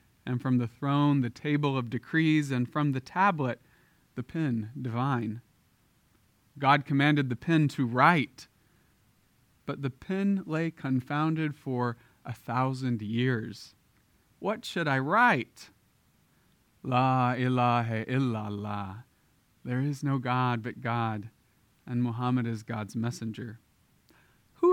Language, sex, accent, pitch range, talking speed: English, male, American, 120-150 Hz, 120 wpm